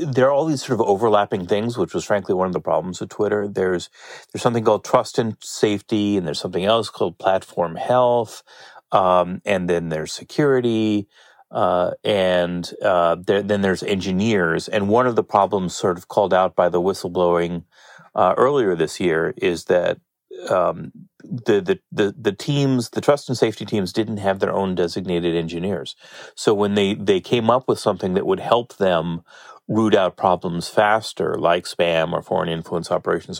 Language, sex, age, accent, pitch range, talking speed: English, male, 30-49, American, 90-120 Hz, 180 wpm